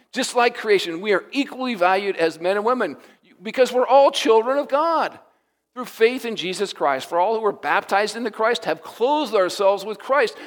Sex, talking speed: male, 195 wpm